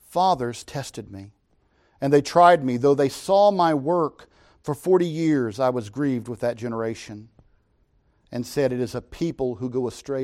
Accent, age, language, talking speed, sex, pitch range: American, 50-69, English, 175 wpm, male, 105-160 Hz